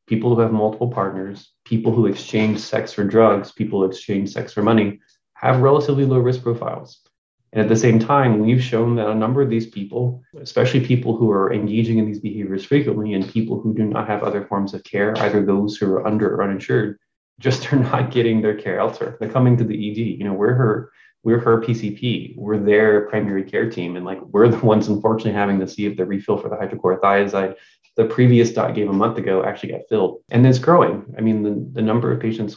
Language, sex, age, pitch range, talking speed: English, male, 20-39, 105-115 Hz, 220 wpm